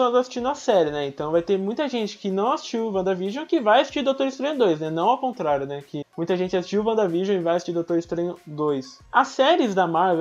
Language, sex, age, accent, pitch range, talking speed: Portuguese, male, 20-39, Brazilian, 195-280 Hz, 240 wpm